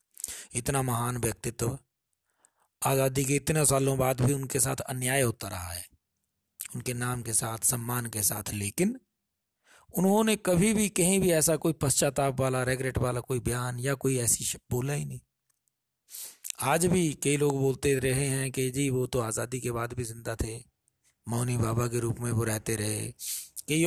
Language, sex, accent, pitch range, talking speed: Hindi, male, native, 120-170 Hz, 170 wpm